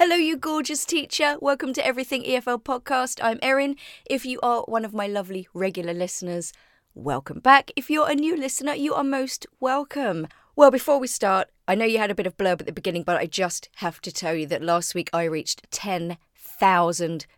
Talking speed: 205 wpm